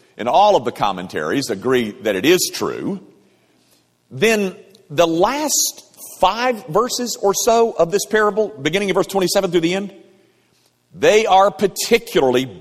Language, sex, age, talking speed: English, male, 50-69, 145 wpm